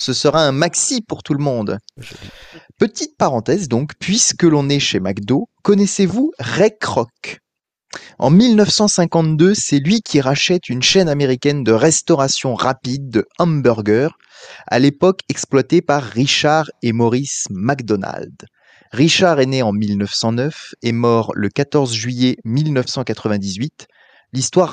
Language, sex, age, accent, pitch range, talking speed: French, male, 30-49, French, 125-170 Hz, 130 wpm